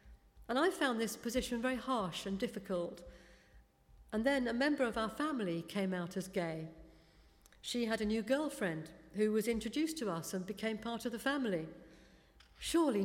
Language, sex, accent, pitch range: English, female, British, 190-245 Hz